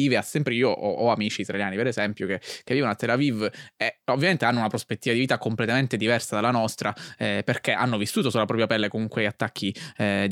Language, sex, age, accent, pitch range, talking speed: Italian, male, 20-39, native, 105-125 Hz, 210 wpm